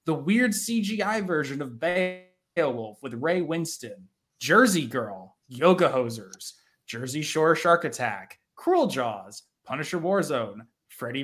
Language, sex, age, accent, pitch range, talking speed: English, male, 20-39, American, 135-195 Hz, 115 wpm